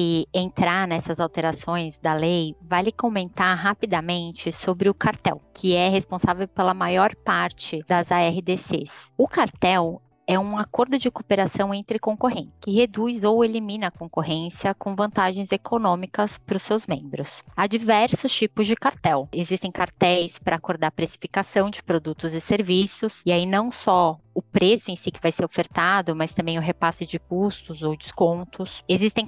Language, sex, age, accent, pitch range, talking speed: Portuguese, female, 20-39, Brazilian, 175-210 Hz, 160 wpm